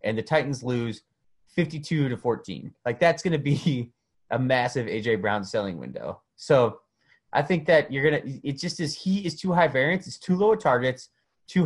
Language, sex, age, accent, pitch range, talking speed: English, male, 30-49, American, 115-165 Hz, 205 wpm